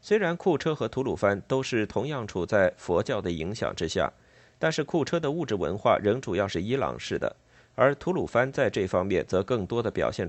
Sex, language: male, Chinese